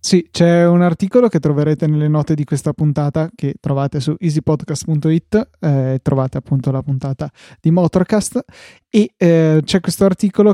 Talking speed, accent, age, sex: 160 wpm, native, 20-39, male